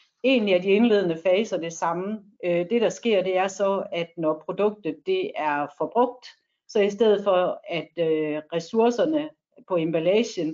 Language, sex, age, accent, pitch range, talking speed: Danish, female, 60-79, native, 175-225 Hz, 155 wpm